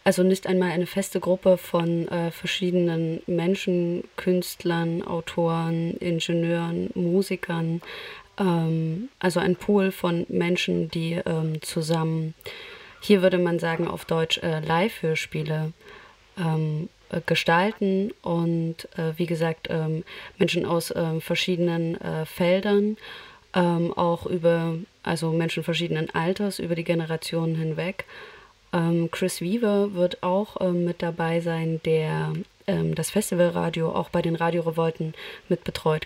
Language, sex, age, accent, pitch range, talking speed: German, female, 20-39, German, 160-180 Hz, 125 wpm